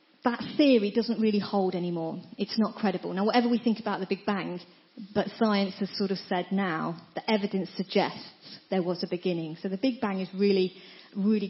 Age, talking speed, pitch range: 40-59, 200 wpm, 185-235 Hz